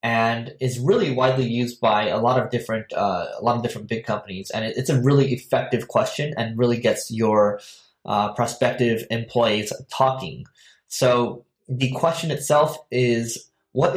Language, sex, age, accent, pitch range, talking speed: English, male, 20-39, American, 110-130 Hz, 165 wpm